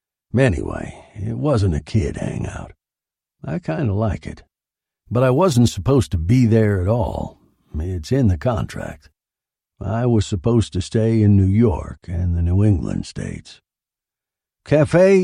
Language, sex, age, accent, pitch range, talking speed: English, male, 60-79, American, 90-120 Hz, 150 wpm